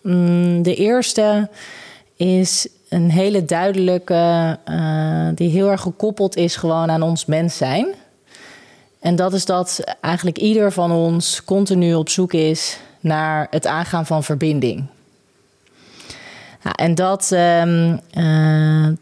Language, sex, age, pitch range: Dutch, female, 30-49, 155-185 Hz